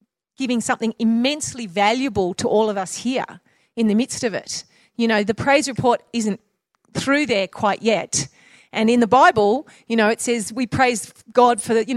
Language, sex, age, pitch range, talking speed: English, female, 40-59, 215-285 Hz, 190 wpm